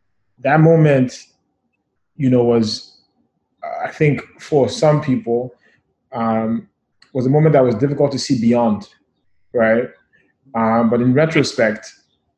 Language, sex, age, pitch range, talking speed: English, male, 30-49, 110-130 Hz, 120 wpm